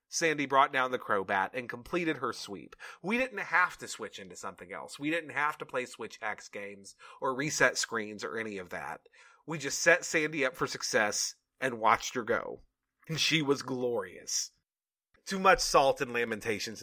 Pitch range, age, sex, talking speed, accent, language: 120-160 Hz, 30-49, male, 185 wpm, American, English